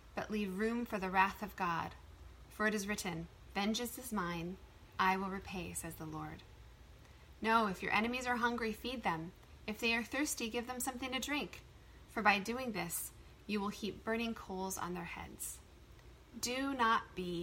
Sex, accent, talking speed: female, American, 185 wpm